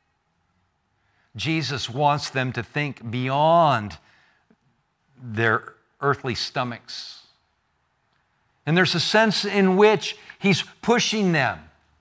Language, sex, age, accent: English, male, 60-79, American